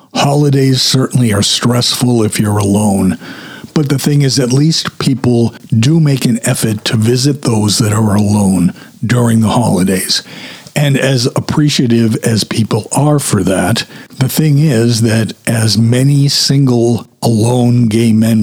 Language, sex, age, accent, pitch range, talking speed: English, male, 50-69, American, 110-140 Hz, 145 wpm